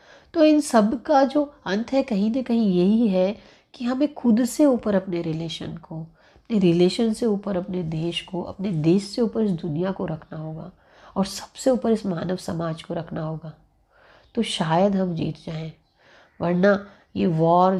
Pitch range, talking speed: 170-220 Hz, 180 wpm